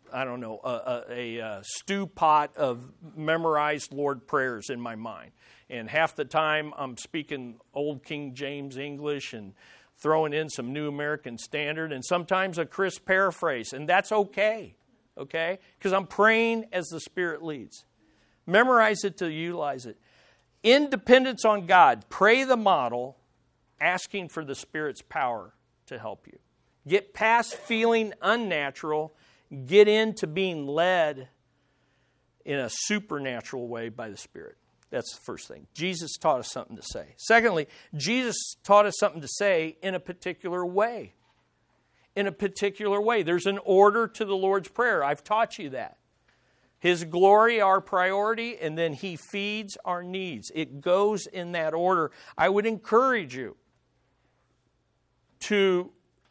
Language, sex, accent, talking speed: English, male, American, 145 wpm